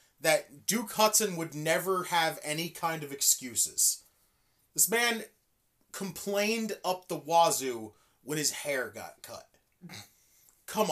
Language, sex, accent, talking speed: English, male, American, 120 wpm